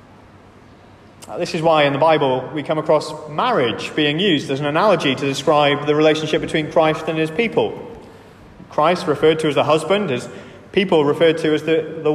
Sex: male